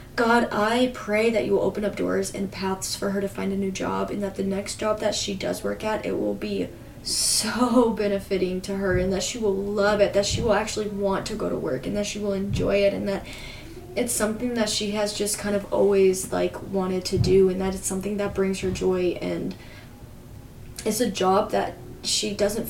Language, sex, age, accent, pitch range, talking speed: English, female, 20-39, American, 190-220 Hz, 225 wpm